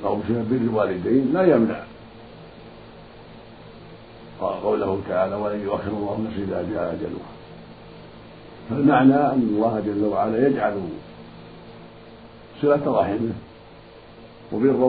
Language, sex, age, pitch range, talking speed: Arabic, male, 50-69, 110-130 Hz, 90 wpm